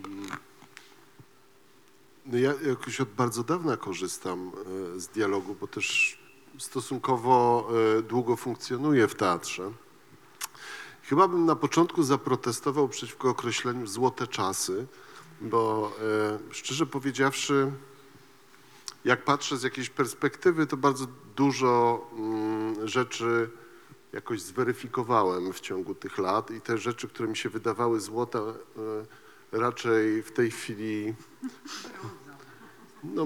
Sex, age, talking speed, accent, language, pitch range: male, 40-59, 100 wpm, native, Polish, 115-140 Hz